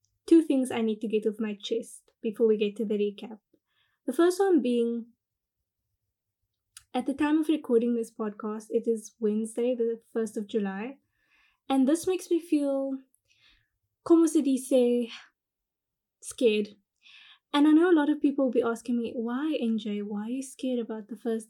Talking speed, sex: 175 wpm, female